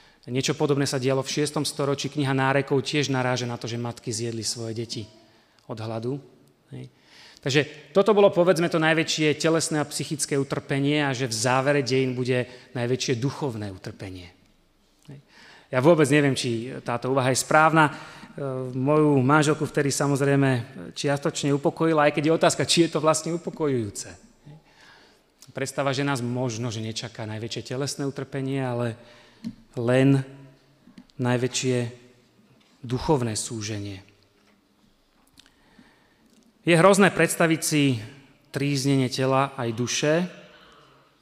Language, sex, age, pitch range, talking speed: Slovak, male, 30-49, 125-155 Hz, 125 wpm